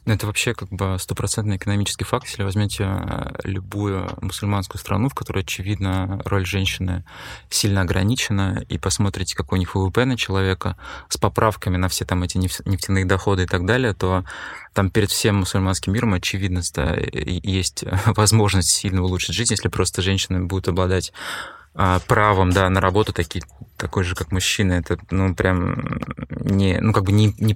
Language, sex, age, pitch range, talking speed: Russian, male, 20-39, 95-105 Hz, 165 wpm